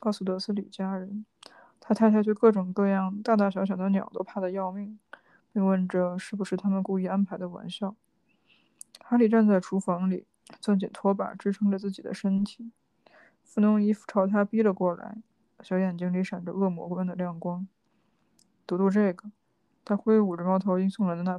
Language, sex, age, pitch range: Chinese, female, 20-39, 190-215 Hz